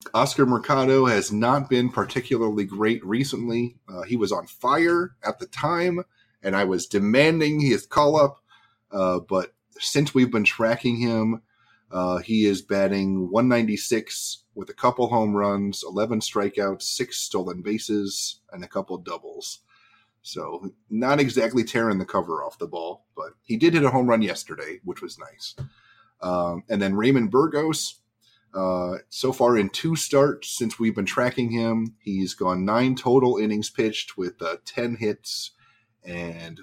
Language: English